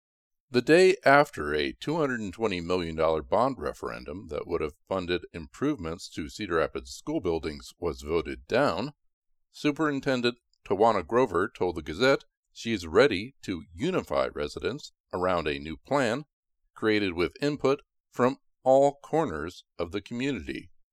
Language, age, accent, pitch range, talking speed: English, 50-69, American, 95-140 Hz, 130 wpm